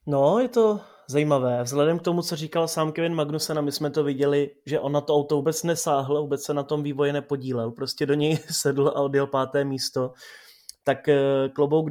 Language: Czech